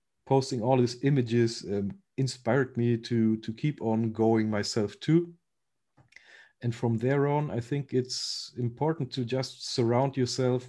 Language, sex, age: English, male, 40-59